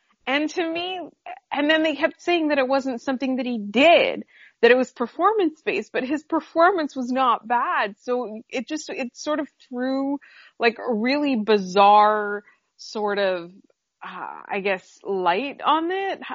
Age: 20-39